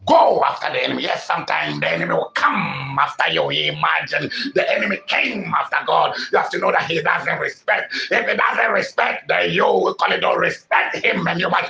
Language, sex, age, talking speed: English, male, 60-79, 215 wpm